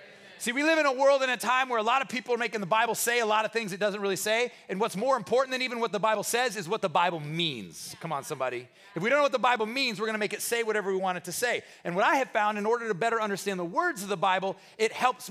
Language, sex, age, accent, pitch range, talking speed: English, male, 30-49, American, 195-240 Hz, 320 wpm